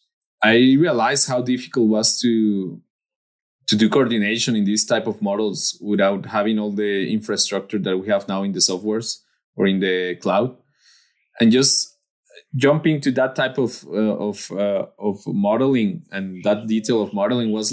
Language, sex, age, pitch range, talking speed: English, male, 20-39, 105-135 Hz, 165 wpm